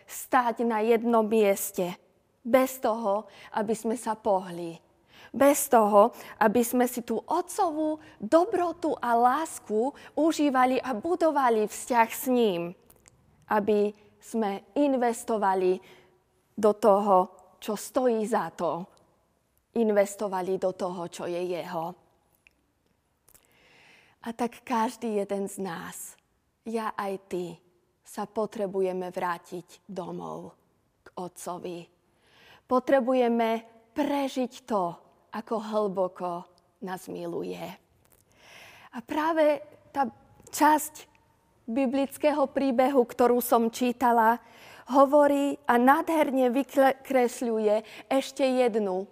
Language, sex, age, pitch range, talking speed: Slovak, female, 20-39, 190-255 Hz, 95 wpm